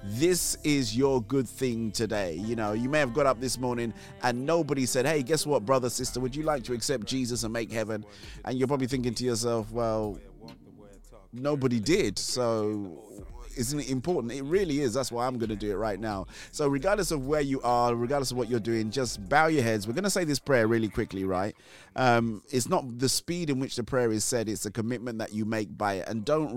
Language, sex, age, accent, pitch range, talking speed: English, male, 30-49, British, 105-130 Hz, 230 wpm